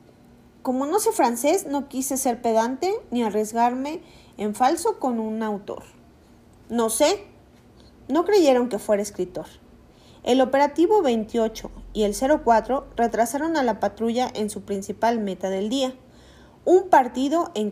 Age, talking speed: 40-59, 140 wpm